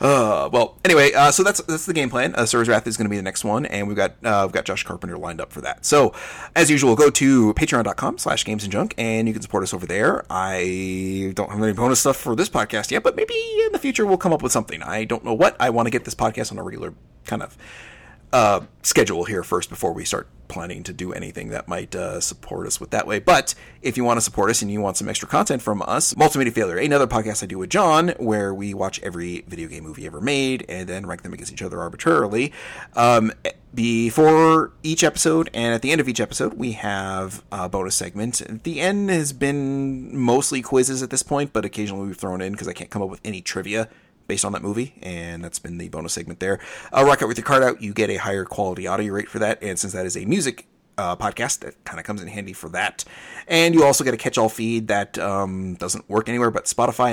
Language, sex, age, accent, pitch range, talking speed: English, male, 30-49, American, 100-135 Hz, 250 wpm